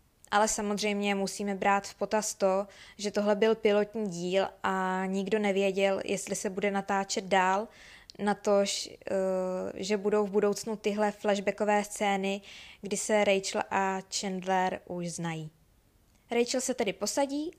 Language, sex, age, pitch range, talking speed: Czech, female, 20-39, 195-215 Hz, 135 wpm